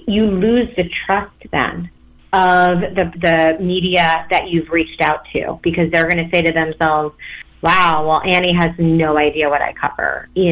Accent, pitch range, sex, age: American, 170-225 Hz, female, 30-49